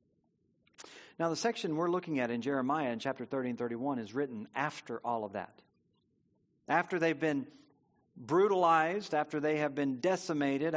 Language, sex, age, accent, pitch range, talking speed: English, male, 50-69, American, 155-220 Hz, 155 wpm